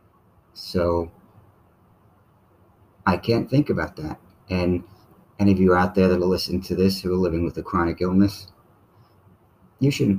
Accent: American